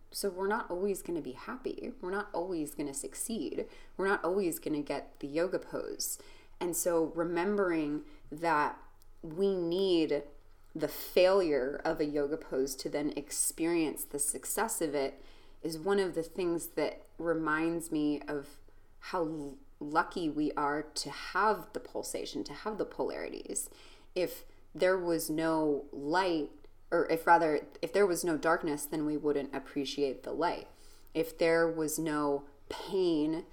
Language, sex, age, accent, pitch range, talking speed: English, female, 20-39, American, 145-170 Hz, 155 wpm